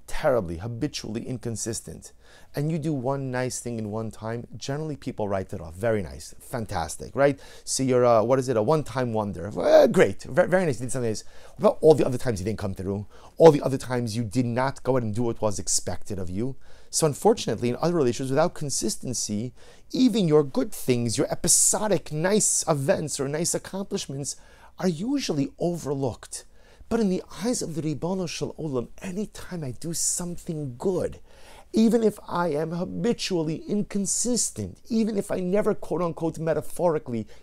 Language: English